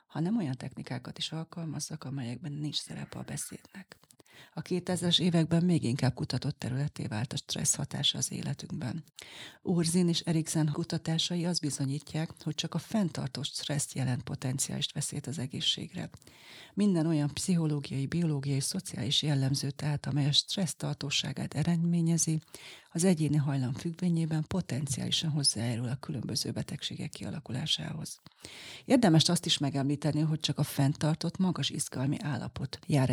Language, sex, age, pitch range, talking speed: Hungarian, female, 40-59, 140-170 Hz, 130 wpm